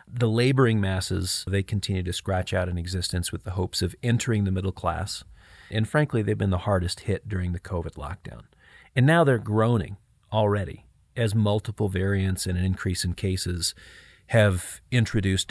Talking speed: 170 wpm